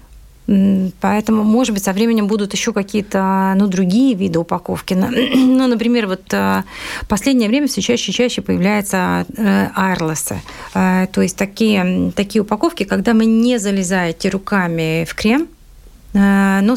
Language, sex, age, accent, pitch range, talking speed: Russian, female, 30-49, native, 185-225 Hz, 125 wpm